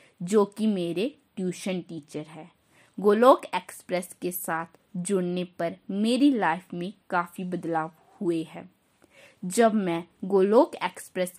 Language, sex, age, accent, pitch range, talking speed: Hindi, female, 20-39, native, 175-225 Hz, 120 wpm